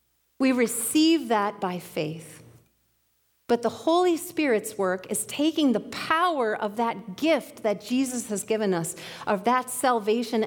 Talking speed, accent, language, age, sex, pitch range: 145 wpm, American, English, 40-59, female, 205-285 Hz